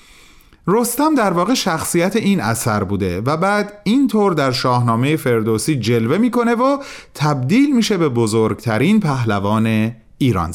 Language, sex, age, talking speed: Persian, male, 40-59, 125 wpm